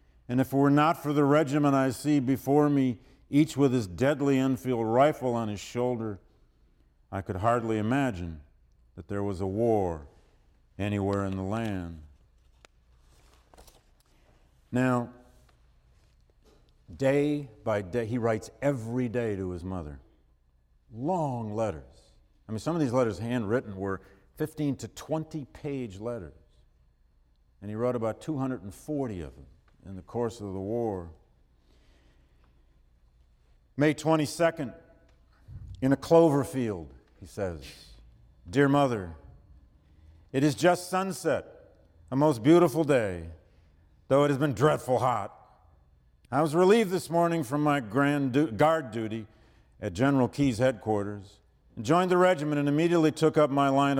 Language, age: English, 50-69